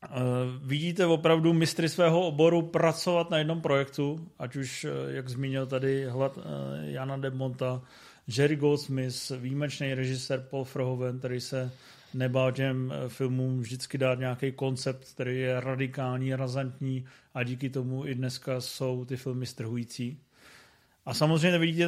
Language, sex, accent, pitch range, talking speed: Czech, male, native, 130-155 Hz, 135 wpm